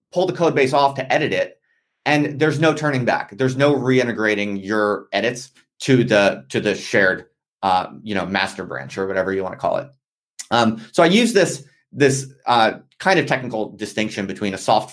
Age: 30-49